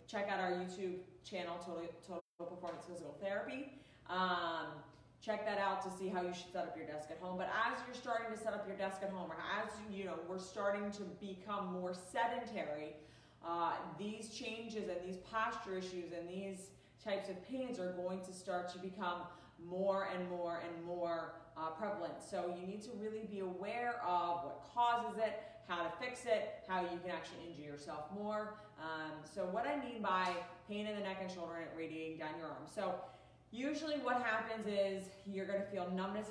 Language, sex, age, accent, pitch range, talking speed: English, female, 30-49, American, 175-215 Hz, 200 wpm